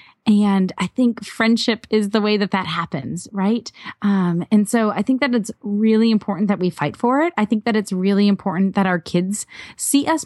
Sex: female